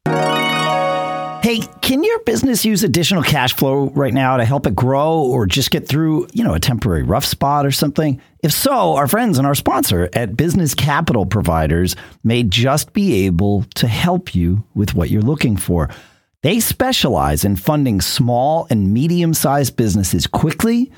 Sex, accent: male, American